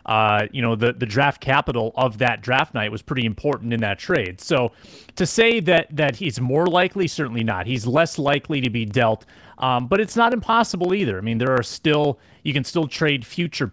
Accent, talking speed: American, 215 wpm